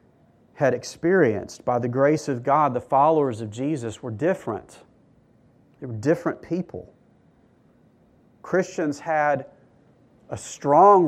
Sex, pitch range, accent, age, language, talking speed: male, 115-155 Hz, American, 40-59, English, 115 wpm